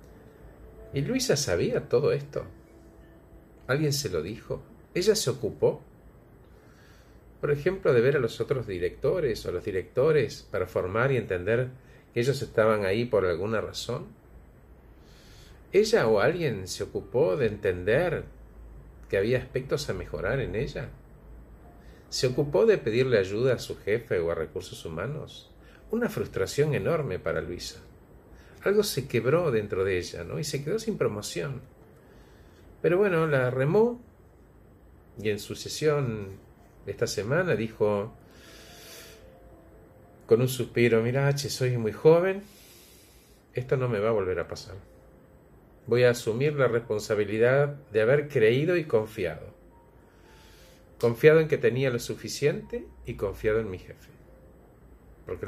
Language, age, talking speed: Spanish, 50-69, 135 wpm